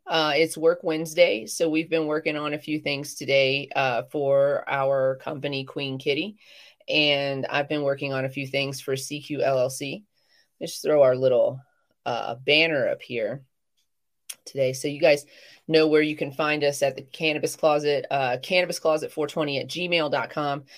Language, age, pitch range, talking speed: English, 30-49, 140-175 Hz, 165 wpm